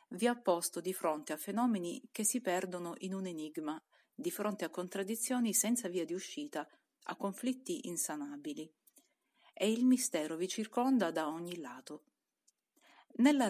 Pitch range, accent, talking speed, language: 170-255 Hz, native, 145 wpm, Italian